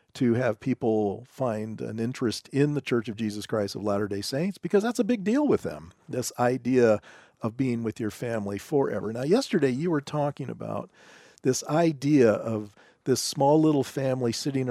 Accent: American